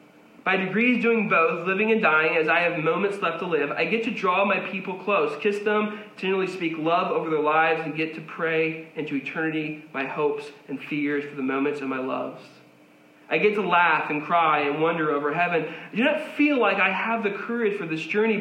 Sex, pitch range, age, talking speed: male, 160-225 Hz, 20-39, 220 wpm